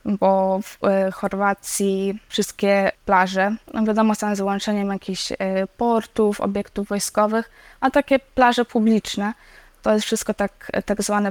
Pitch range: 200-225 Hz